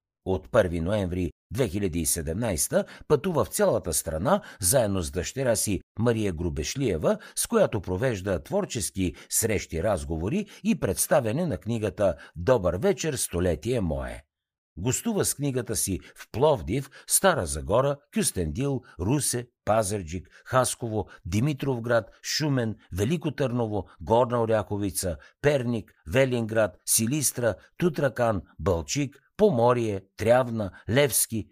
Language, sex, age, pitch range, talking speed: Bulgarian, male, 60-79, 95-135 Hz, 105 wpm